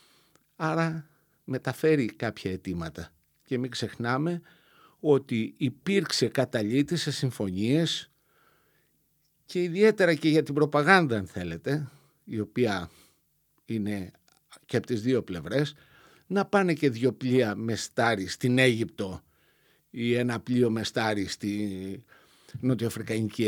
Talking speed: 105 wpm